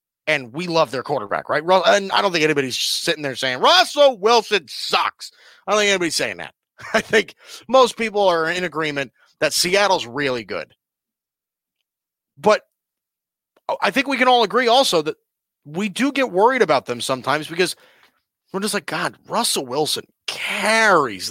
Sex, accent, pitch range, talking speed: male, American, 140-210 Hz, 165 wpm